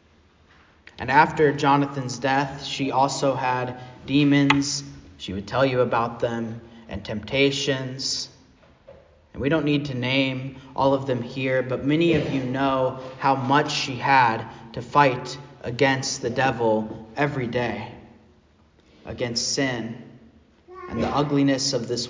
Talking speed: 135 wpm